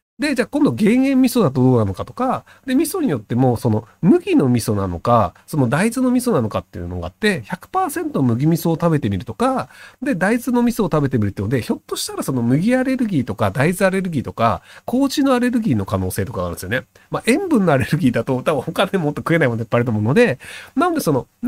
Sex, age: male, 40-59